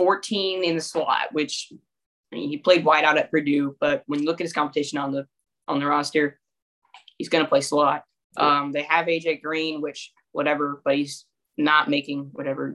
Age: 10-29